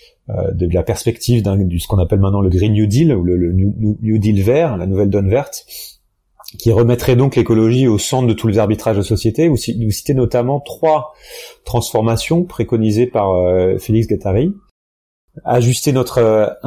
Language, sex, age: French, male, 30-49